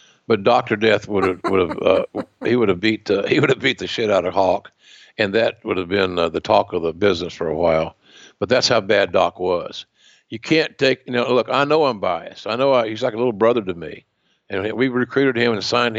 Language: English